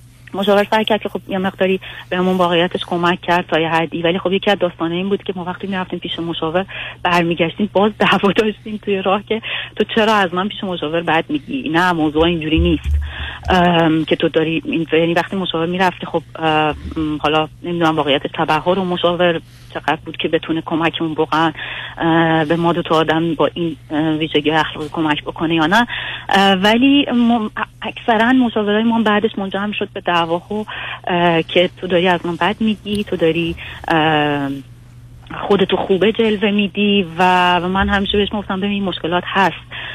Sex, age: female, 30-49